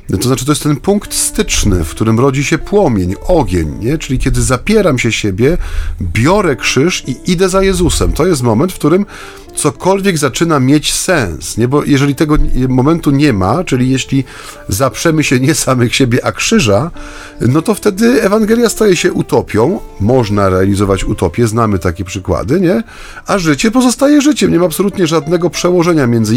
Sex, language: male, Polish